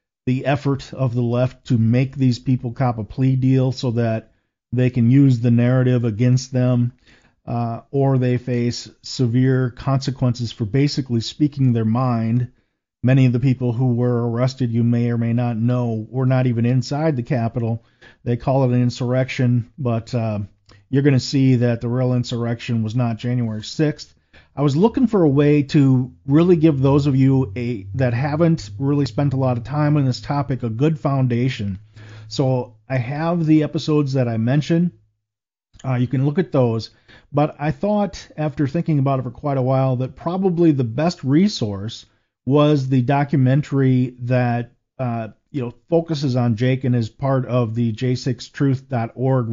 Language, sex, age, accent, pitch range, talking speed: English, male, 40-59, American, 120-140 Hz, 175 wpm